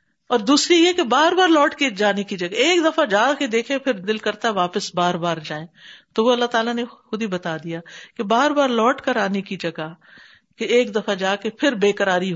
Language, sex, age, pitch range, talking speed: Urdu, female, 50-69, 195-280 Hz, 230 wpm